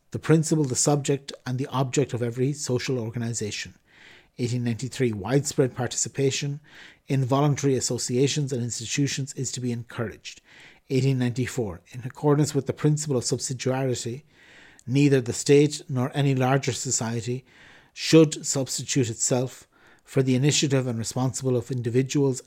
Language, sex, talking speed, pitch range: English, male, 130 wpm, 120-145 Hz